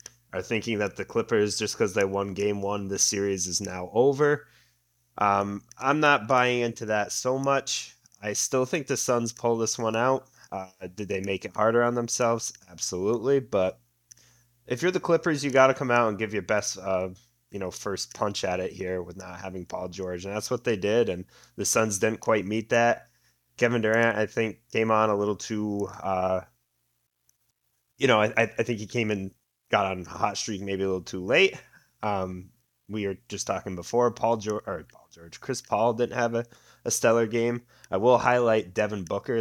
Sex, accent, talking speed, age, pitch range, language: male, American, 200 wpm, 20-39, 95-120 Hz, English